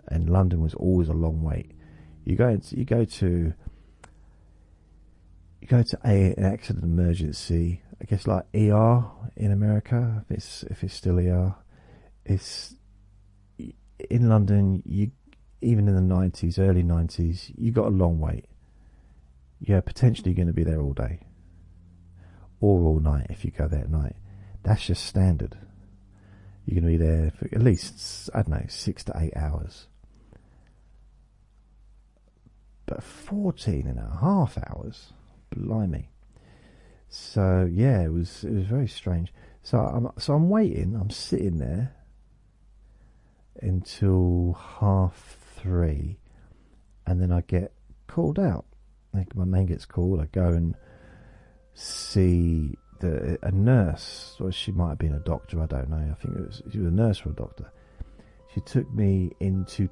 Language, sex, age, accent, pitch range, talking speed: English, male, 40-59, British, 85-105 Hz, 150 wpm